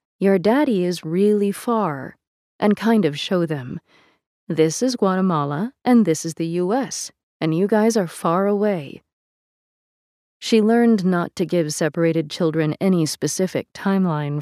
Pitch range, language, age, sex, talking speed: 155-195 Hz, English, 40-59, female, 140 wpm